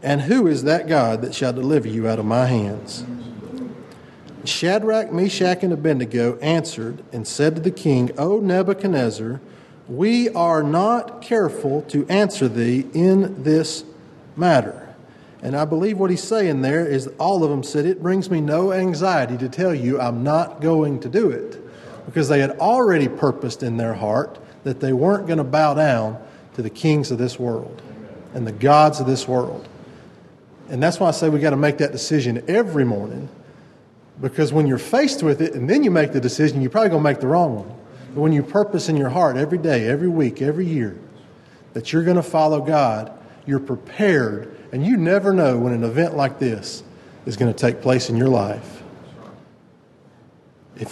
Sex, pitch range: male, 125-165 Hz